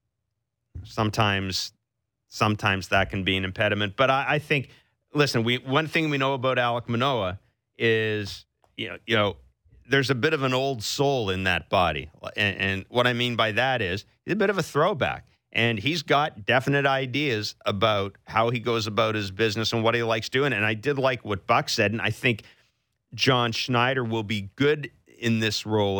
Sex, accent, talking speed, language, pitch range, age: male, American, 195 wpm, English, 110-140 Hz, 40-59